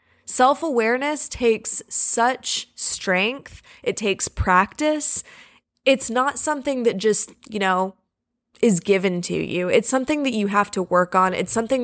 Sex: female